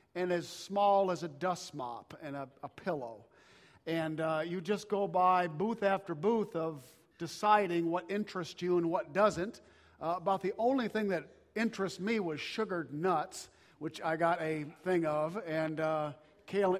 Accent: American